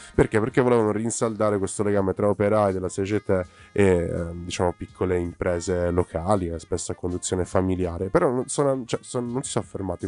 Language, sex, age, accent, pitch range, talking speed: Italian, male, 20-39, native, 95-115 Hz, 180 wpm